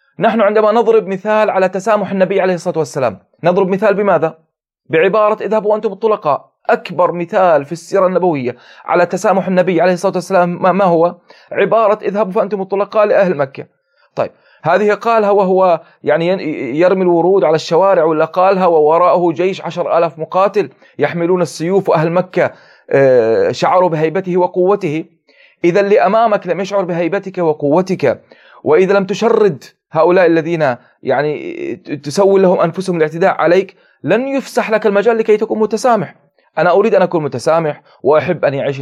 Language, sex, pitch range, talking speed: Arabic, male, 170-210 Hz, 140 wpm